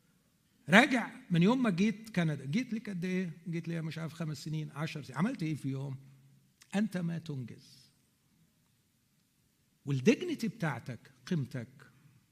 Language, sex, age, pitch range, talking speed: Arabic, male, 50-69, 140-220 Hz, 135 wpm